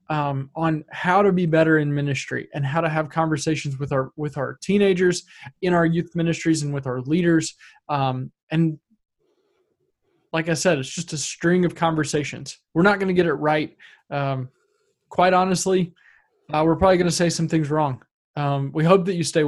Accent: American